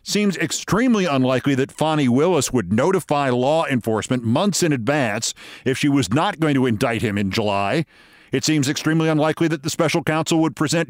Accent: American